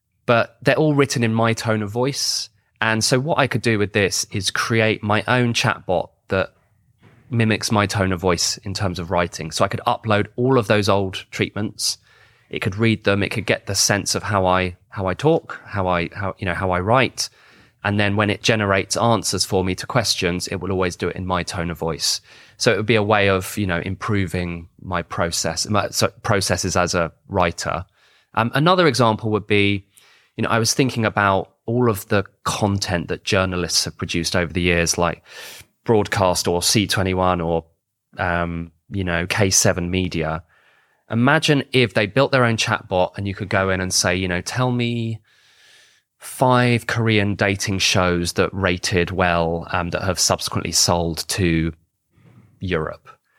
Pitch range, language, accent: 90-115 Hz, English, British